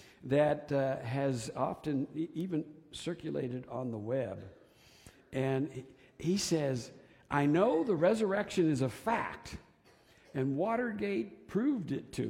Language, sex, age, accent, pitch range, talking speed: English, male, 60-79, American, 125-180 Hz, 115 wpm